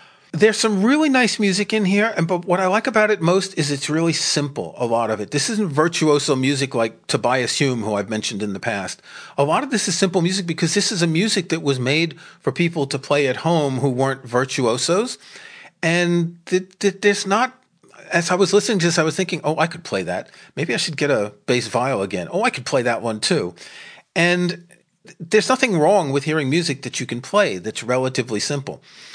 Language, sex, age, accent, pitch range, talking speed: English, male, 40-59, American, 130-185 Hz, 225 wpm